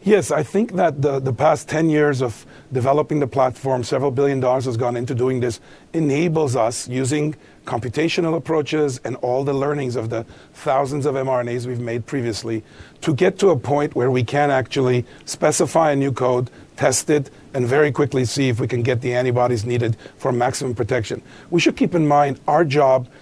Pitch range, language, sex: 125-150 Hz, English, male